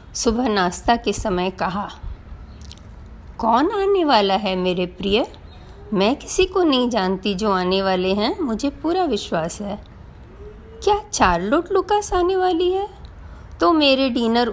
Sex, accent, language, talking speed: female, native, Hindi, 135 wpm